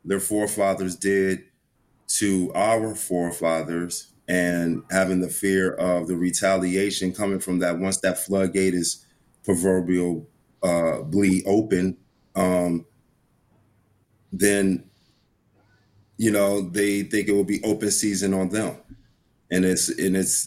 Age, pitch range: 30-49, 85-100 Hz